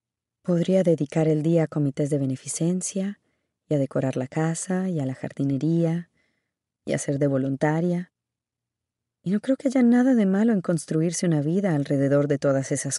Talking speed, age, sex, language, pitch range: 175 wpm, 30-49, female, Spanish, 140-200 Hz